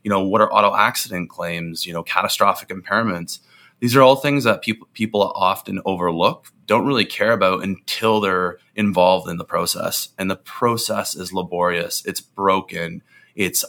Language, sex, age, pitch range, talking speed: English, male, 20-39, 90-105 Hz, 165 wpm